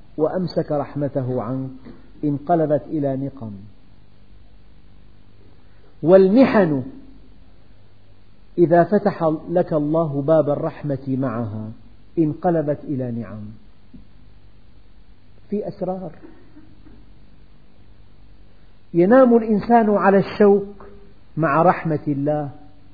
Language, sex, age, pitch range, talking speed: Arabic, male, 50-69, 100-160 Hz, 75 wpm